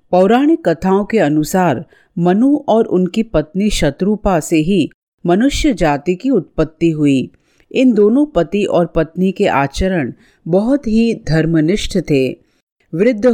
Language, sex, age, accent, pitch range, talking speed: Hindi, female, 40-59, native, 155-215 Hz, 125 wpm